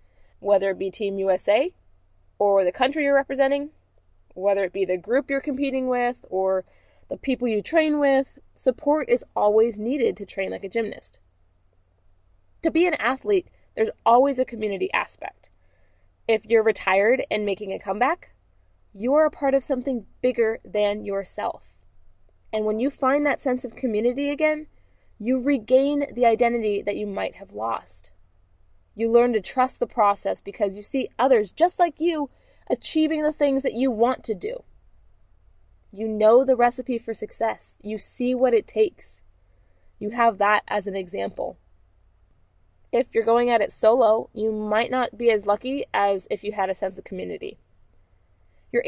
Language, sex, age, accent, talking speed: English, female, 20-39, American, 165 wpm